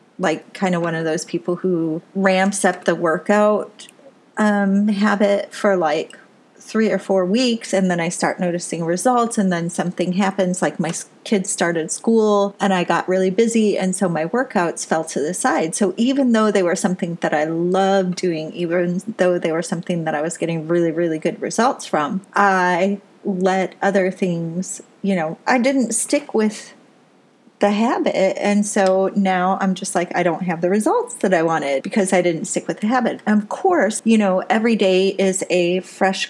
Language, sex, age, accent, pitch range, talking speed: English, female, 30-49, American, 175-205 Hz, 190 wpm